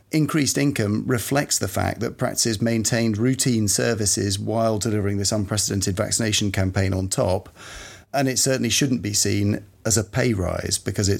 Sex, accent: male, British